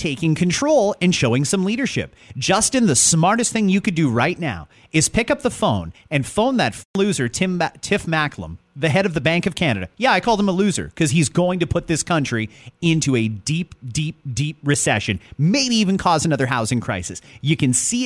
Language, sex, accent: English, male, American